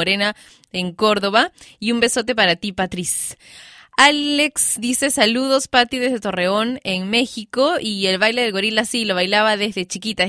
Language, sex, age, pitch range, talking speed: Spanish, female, 20-39, 205-255 Hz, 155 wpm